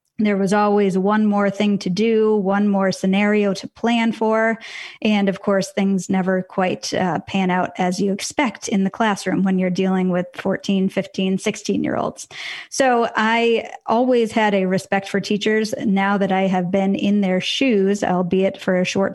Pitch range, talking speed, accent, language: 190-225 Hz, 175 wpm, American, English